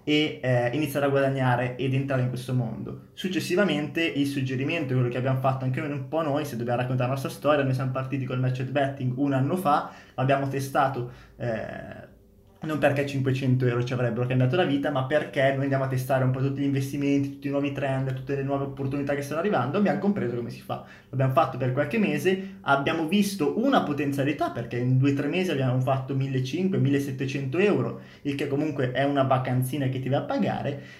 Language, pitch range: Italian, 130-150 Hz